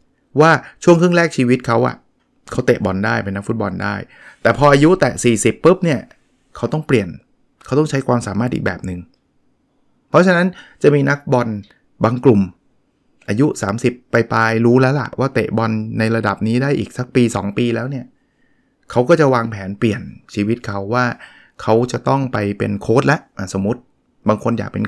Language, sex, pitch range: Thai, male, 110-135 Hz